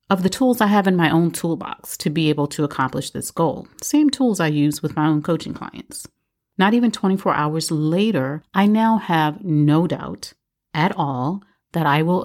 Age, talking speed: 40-59, 195 wpm